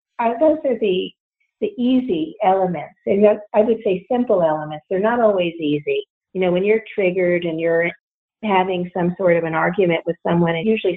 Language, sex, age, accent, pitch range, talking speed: English, female, 50-69, American, 175-220 Hz, 185 wpm